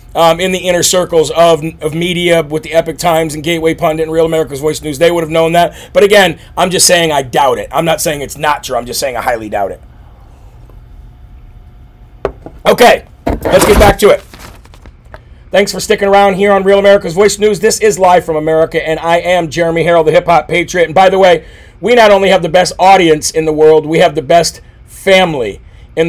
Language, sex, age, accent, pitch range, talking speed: English, male, 40-59, American, 160-190 Hz, 220 wpm